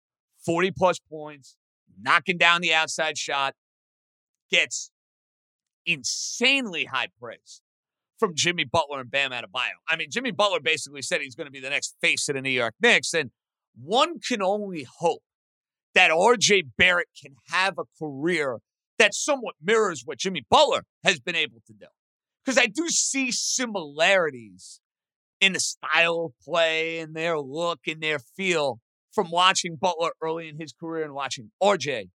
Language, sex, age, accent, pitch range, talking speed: English, male, 50-69, American, 135-195 Hz, 155 wpm